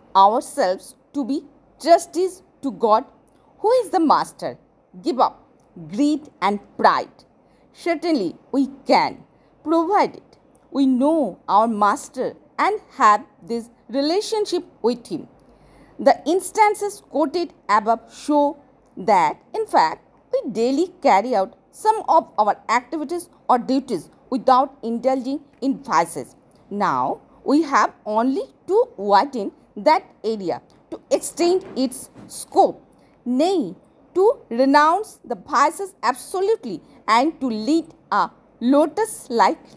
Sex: female